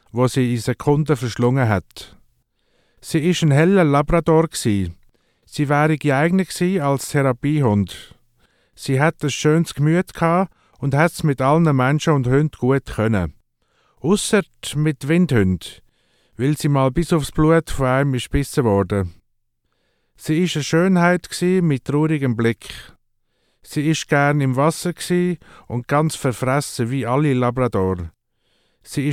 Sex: male